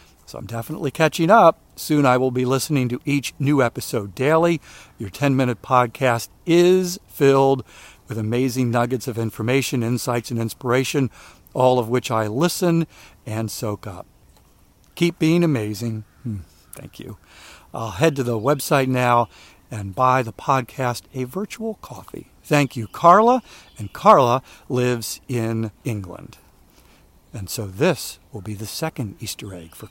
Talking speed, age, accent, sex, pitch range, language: 145 wpm, 50-69, American, male, 115-145 Hz, English